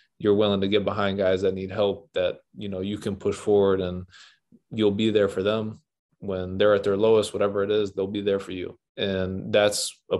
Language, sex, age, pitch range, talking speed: English, male, 20-39, 95-110 Hz, 225 wpm